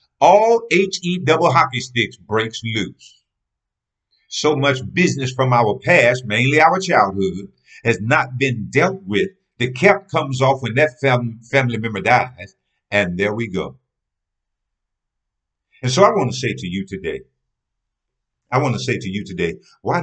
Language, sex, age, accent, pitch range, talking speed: English, male, 50-69, American, 95-135 Hz, 155 wpm